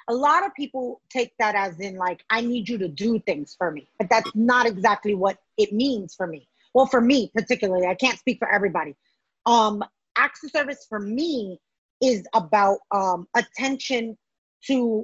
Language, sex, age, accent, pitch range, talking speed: English, female, 30-49, American, 210-270 Hz, 180 wpm